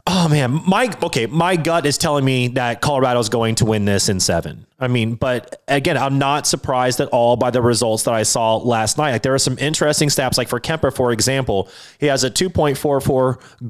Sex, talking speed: male, 220 wpm